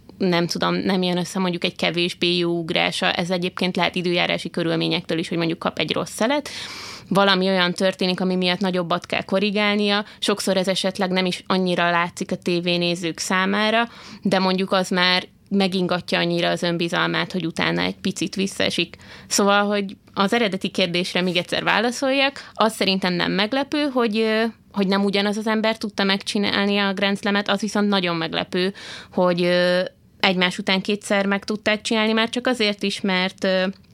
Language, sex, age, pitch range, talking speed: Hungarian, female, 20-39, 180-210 Hz, 160 wpm